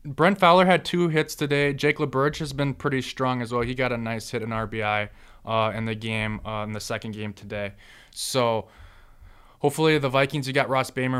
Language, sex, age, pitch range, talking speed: English, male, 20-39, 110-130 Hz, 210 wpm